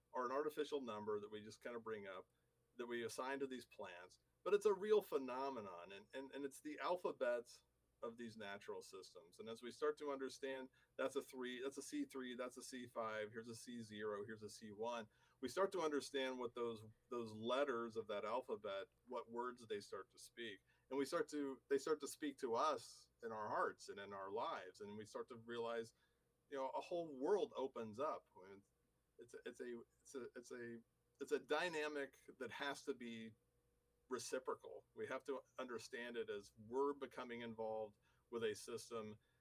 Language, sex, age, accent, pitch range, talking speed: English, male, 40-59, American, 115-195 Hz, 200 wpm